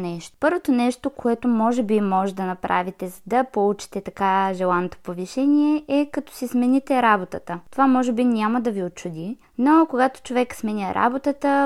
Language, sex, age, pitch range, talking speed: Bulgarian, female, 20-39, 205-260 Hz, 165 wpm